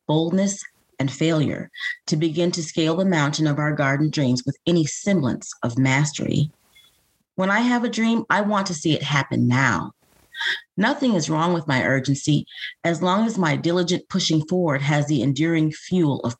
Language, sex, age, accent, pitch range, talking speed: English, female, 40-59, American, 140-175 Hz, 175 wpm